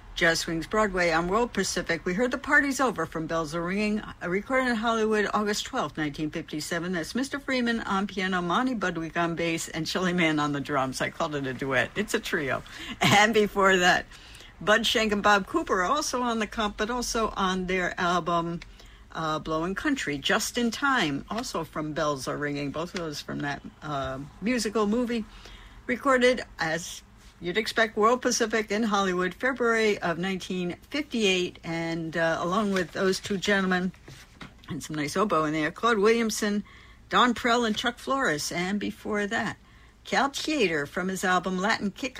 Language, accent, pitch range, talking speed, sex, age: English, American, 165-225 Hz, 175 wpm, female, 60-79